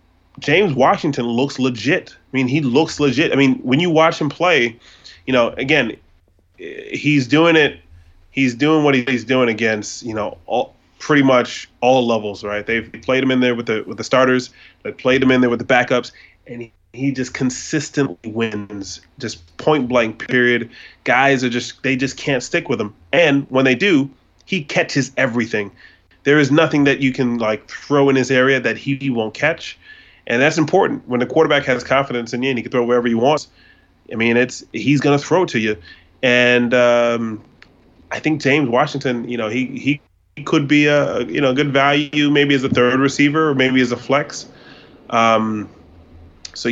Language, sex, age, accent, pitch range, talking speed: English, male, 20-39, American, 115-140 Hz, 195 wpm